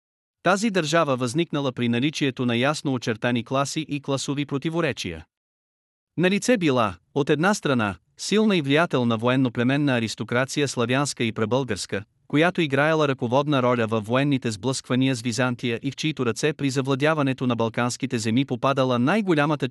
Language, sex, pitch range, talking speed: Bulgarian, male, 120-150 Hz, 140 wpm